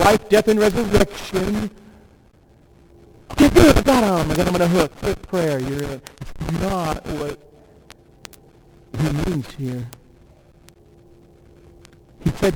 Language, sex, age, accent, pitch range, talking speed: English, male, 60-79, American, 100-165 Hz, 125 wpm